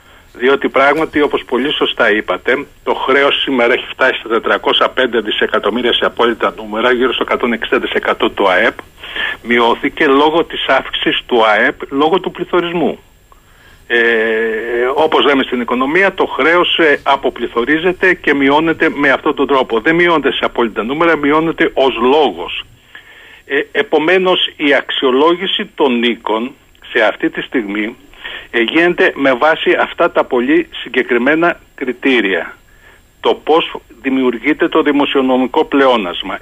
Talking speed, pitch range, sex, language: 125 wpm, 125-160 Hz, male, Greek